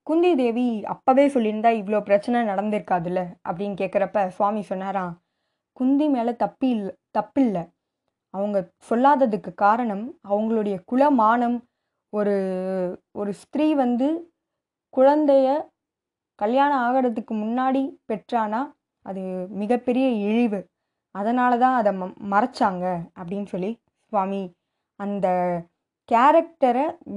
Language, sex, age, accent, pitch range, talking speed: Tamil, female, 20-39, native, 200-275 Hz, 95 wpm